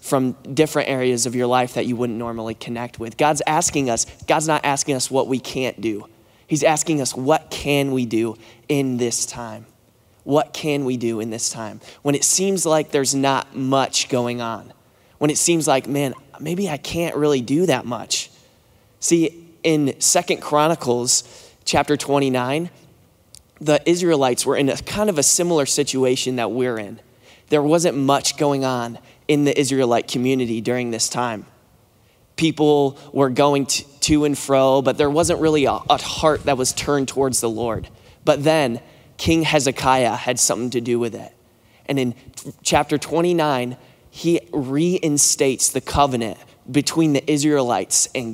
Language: English